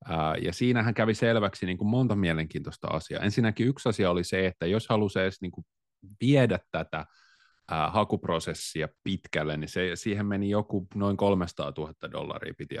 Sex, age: male, 30-49